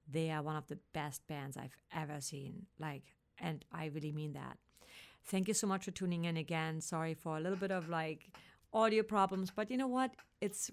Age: 40-59